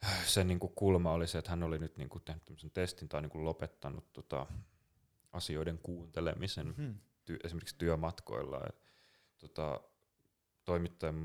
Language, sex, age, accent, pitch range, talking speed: Finnish, male, 30-49, native, 75-90 Hz, 125 wpm